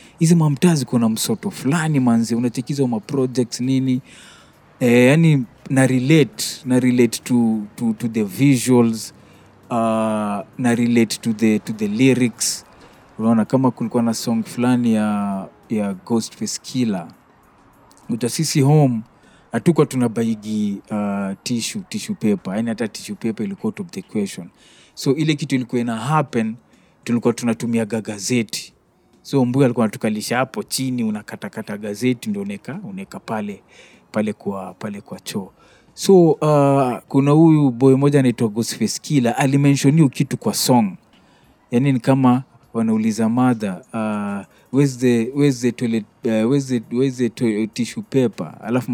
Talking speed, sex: 110 wpm, male